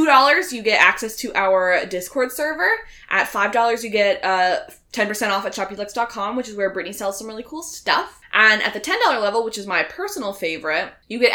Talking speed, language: 190 wpm, English